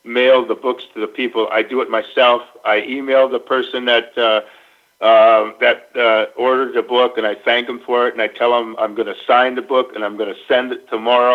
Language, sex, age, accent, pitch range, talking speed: English, male, 50-69, American, 110-120 Hz, 240 wpm